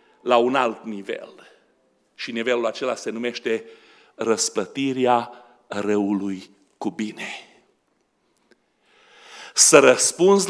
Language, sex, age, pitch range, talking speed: Romanian, male, 50-69, 115-170 Hz, 85 wpm